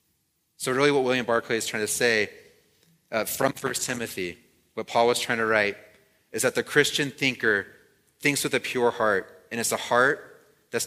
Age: 30-49